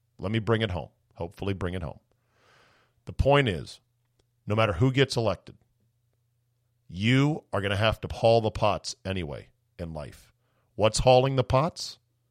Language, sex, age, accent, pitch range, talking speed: English, male, 50-69, American, 105-125 Hz, 160 wpm